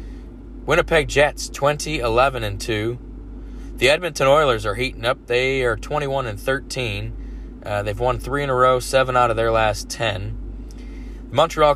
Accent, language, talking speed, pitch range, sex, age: American, English, 160 wpm, 105-135 Hz, male, 20-39